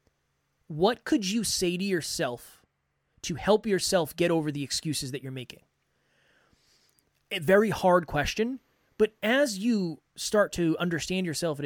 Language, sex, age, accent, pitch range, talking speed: English, male, 20-39, American, 145-195 Hz, 145 wpm